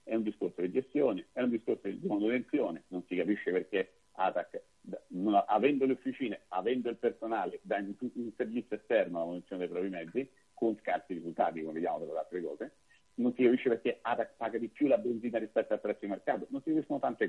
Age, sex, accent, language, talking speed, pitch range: 50-69, male, native, Italian, 200 wpm, 100-135 Hz